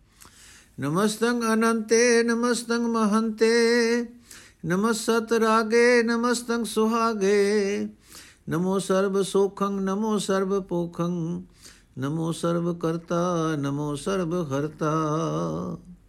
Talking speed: 80 wpm